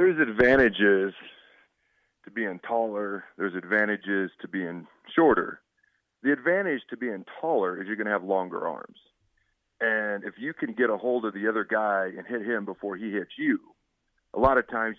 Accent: American